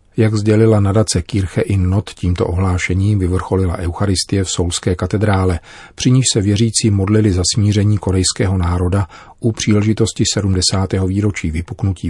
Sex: male